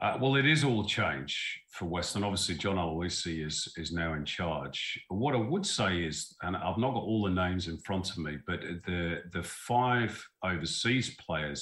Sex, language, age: male, English, 40-59